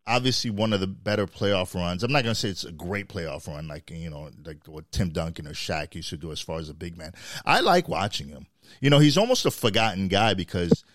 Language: English